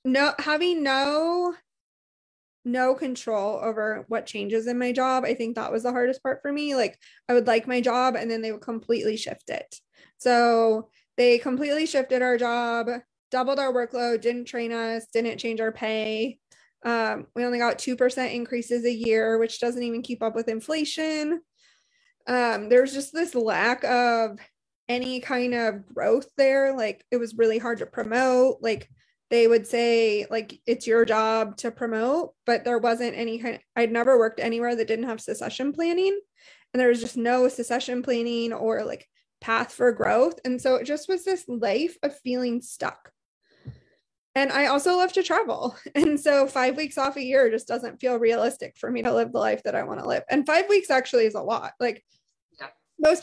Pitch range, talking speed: 230-270 Hz, 185 wpm